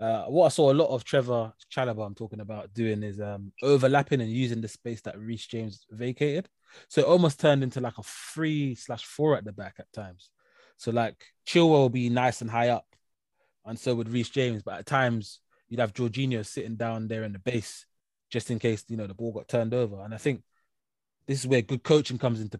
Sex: male